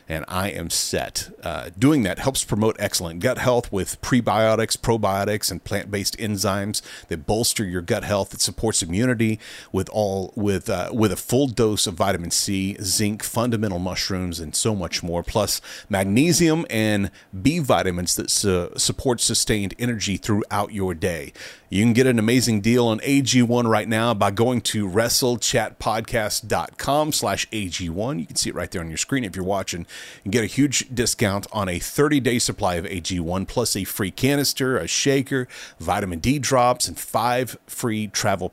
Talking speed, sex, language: 170 wpm, male, English